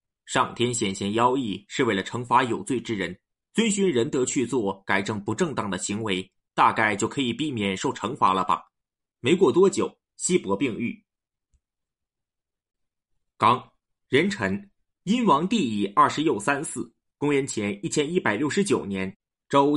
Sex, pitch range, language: male, 100-155 Hz, Chinese